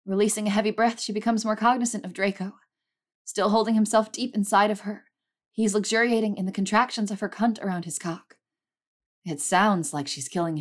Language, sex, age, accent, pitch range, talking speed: English, female, 20-39, American, 165-215 Hz, 185 wpm